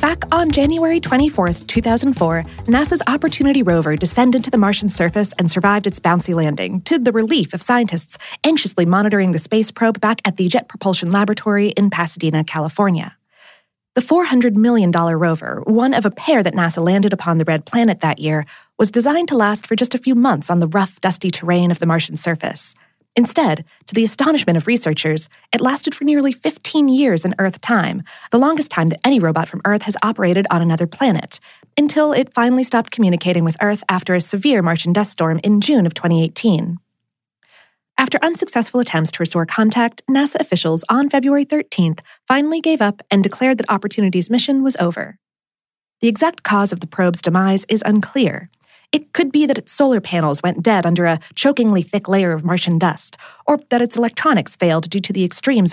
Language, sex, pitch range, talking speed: English, female, 175-245 Hz, 185 wpm